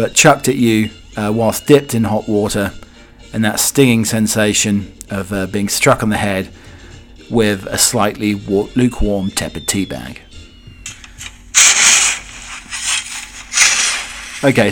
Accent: British